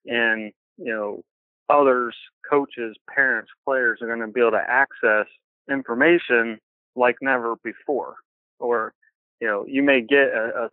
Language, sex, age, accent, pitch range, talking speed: English, male, 30-49, American, 110-130 Hz, 145 wpm